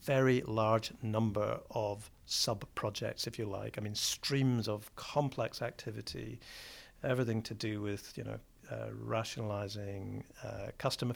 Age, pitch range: 50-69, 110-125 Hz